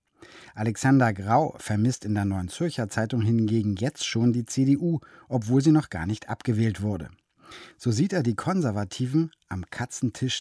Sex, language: male, German